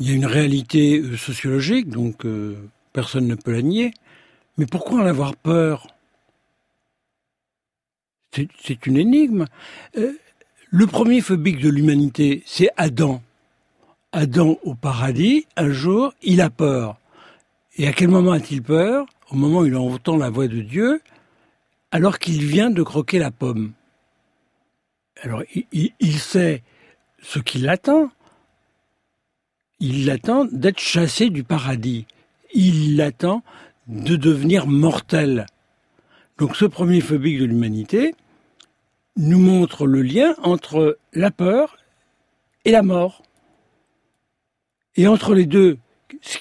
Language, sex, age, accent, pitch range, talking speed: French, male, 60-79, French, 140-190 Hz, 130 wpm